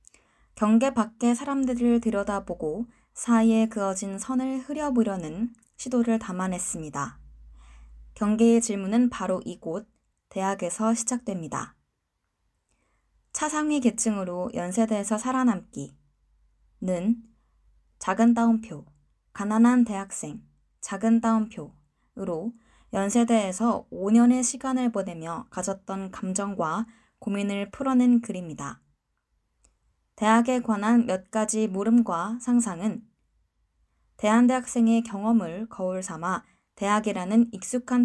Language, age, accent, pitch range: Korean, 20-39, native, 180-235 Hz